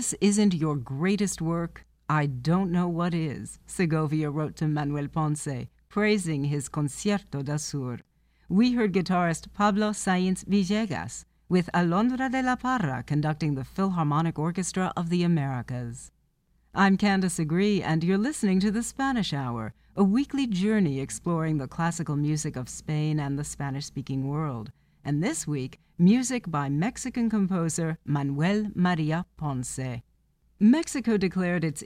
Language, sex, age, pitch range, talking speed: English, female, 60-79, 145-195 Hz, 140 wpm